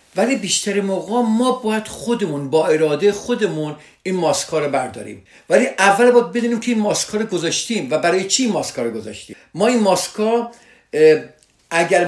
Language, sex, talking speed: Persian, male, 150 wpm